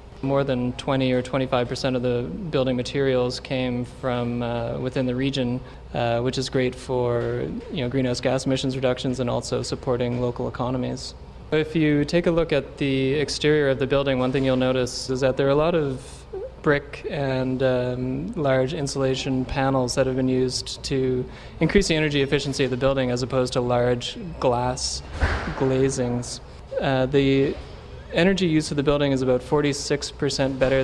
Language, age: English, 20-39